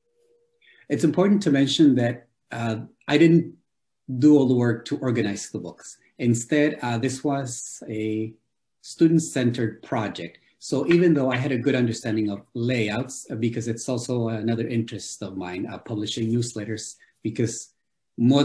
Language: English